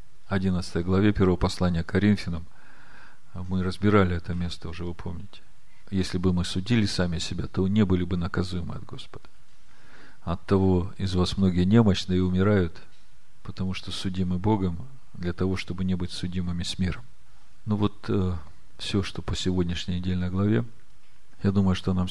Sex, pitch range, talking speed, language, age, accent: male, 90-105 Hz, 160 wpm, Russian, 40-59, native